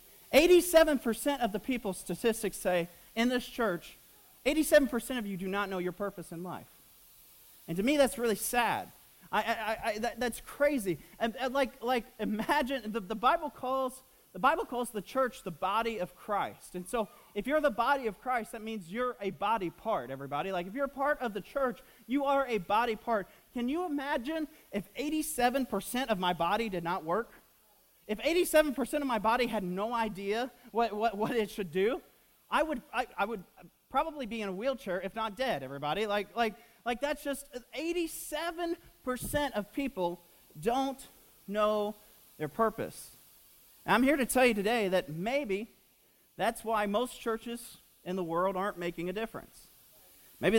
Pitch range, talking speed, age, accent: 200-260 Hz, 180 wpm, 30-49, American